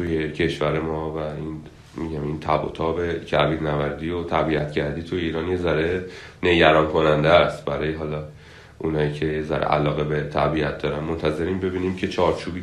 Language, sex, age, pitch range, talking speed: Persian, male, 30-49, 80-95 Hz, 160 wpm